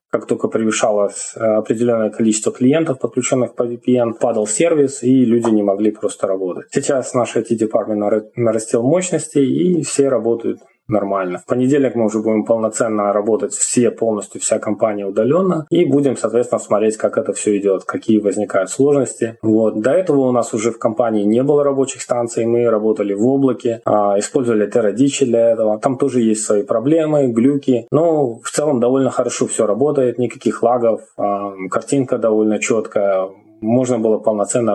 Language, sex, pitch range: Russian, male, 105-130 Hz